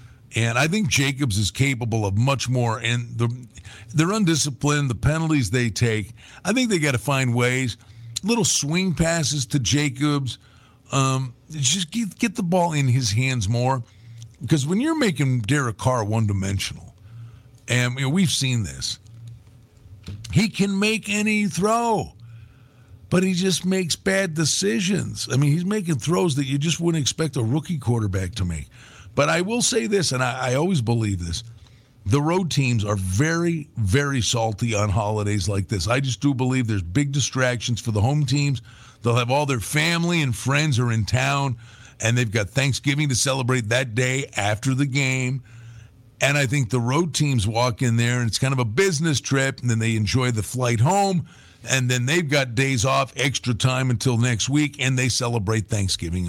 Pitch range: 115-145 Hz